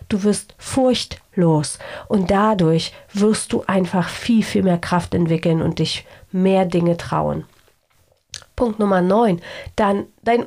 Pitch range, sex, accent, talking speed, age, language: 170-220 Hz, female, German, 130 wpm, 40-59, German